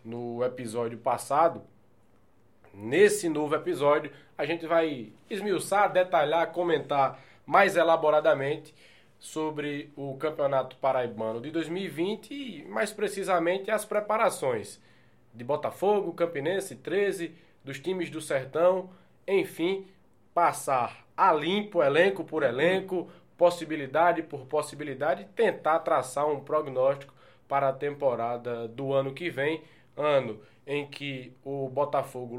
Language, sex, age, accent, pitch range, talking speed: Portuguese, male, 20-39, Brazilian, 125-165 Hz, 110 wpm